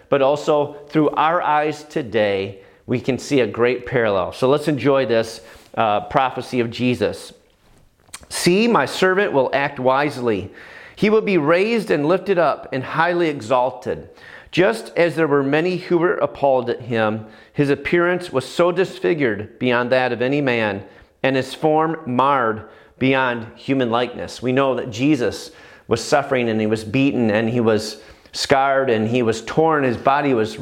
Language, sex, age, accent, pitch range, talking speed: English, male, 40-59, American, 115-150 Hz, 165 wpm